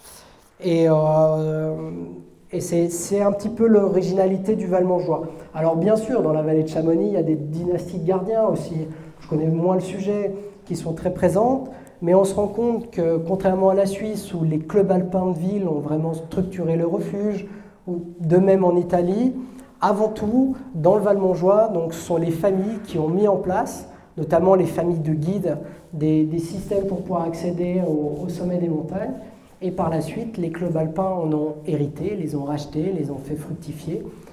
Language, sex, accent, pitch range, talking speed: French, male, French, 155-190 Hz, 190 wpm